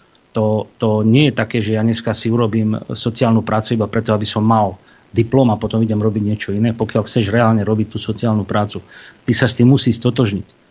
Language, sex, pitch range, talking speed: Slovak, male, 105-120 Hz, 205 wpm